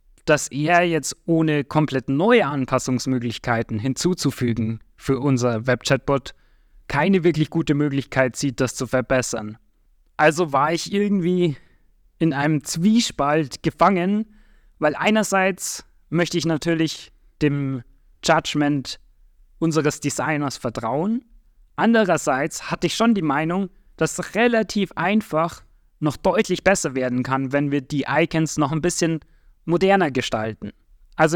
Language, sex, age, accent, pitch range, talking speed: German, male, 30-49, German, 130-165 Hz, 120 wpm